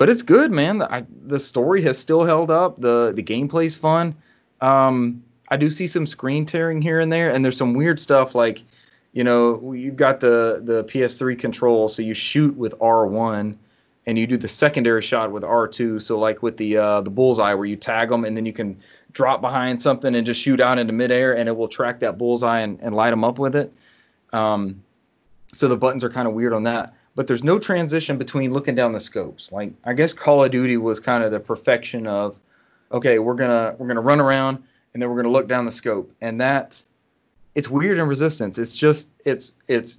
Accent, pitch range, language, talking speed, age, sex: American, 115-135 Hz, English, 225 wpm, 30-49, male